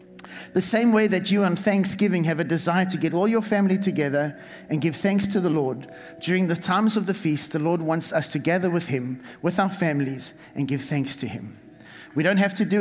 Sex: male